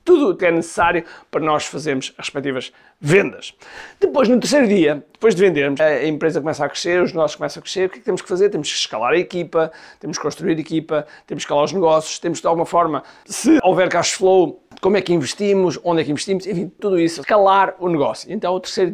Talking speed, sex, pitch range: 240 wpm, male, 160-195 Hz